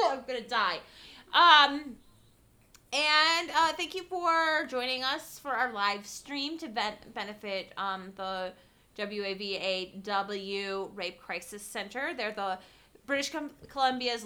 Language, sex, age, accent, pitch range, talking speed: English, female, 20-39, American, 200-255 Hz, 135 wpm